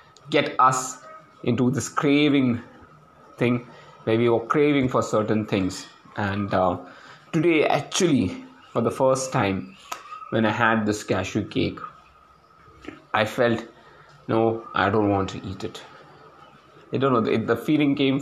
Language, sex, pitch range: English, male, 110-140 Hz